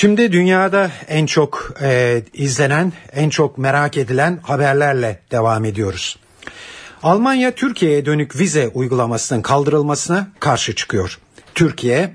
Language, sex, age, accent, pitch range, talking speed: Turkish, male, 60-79, native, 115-170 Hz, 105 wpm